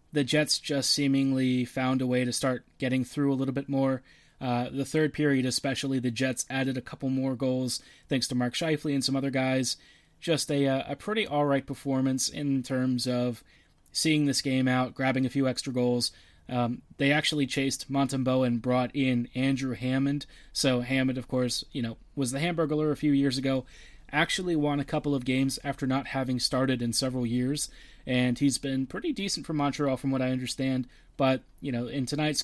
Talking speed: 195 wpm